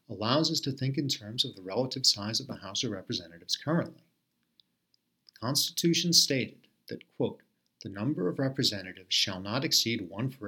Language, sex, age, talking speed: English, male, 40-59, 170 wpm